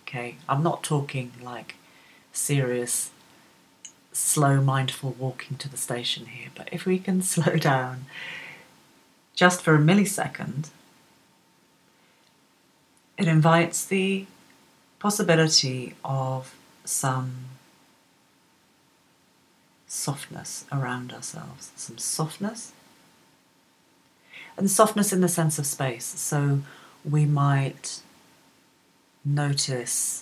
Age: 40-59